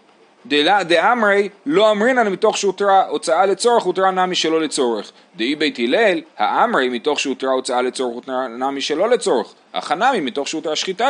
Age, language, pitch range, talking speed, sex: 30-49, Hebrew, 140-200 Hz, 160 wpm, male